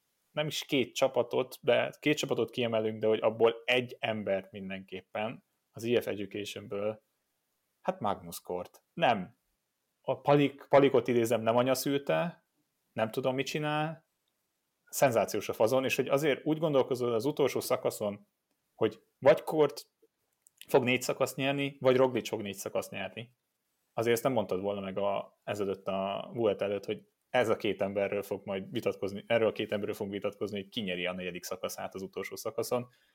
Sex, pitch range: male, 100-130 Hz